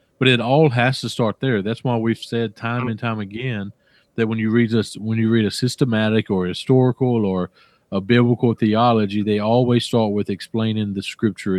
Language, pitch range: English, 105-120 Hz